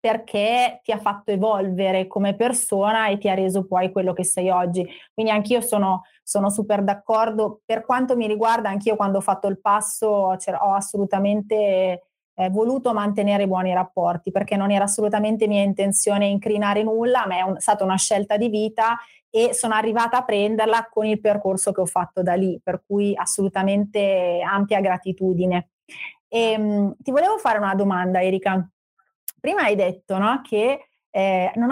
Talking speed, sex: 165 wpm, female